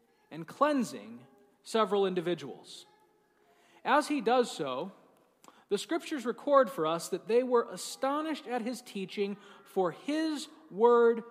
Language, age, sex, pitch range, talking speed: English, 40-59, male, 195-275 Hz, 120 wpm